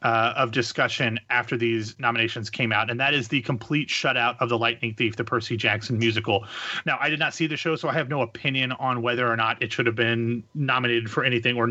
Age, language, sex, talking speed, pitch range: 30-49, English, male, 235 wpm, 120-150 Hz